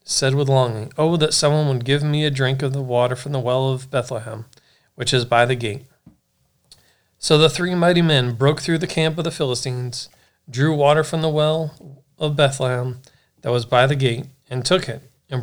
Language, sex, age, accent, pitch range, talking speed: English, male, 40-59, American, 130-150 Hz, 200 wpm